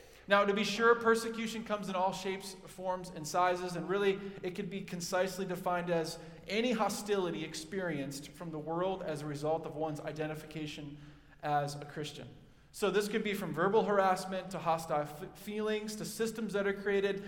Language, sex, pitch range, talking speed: English, male, 155-200 Hz, 175 wpm